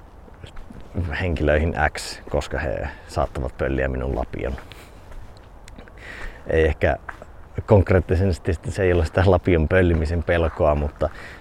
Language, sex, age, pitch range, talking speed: Finnish, male, 30-49, 80-100 Hz, 100 wpm